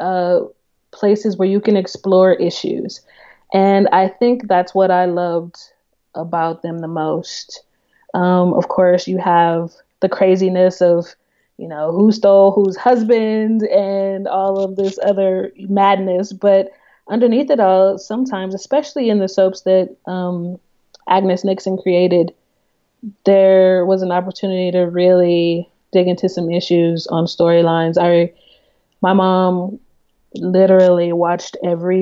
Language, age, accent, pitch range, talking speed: English, 20-39, American, 180-200 Hz, 130 wpm